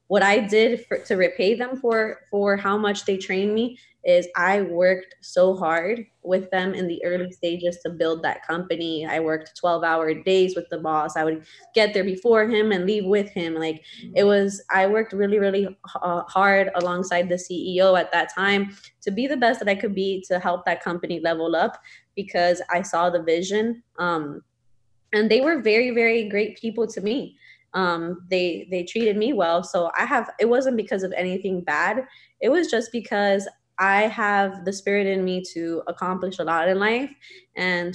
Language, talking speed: English, 195 wpm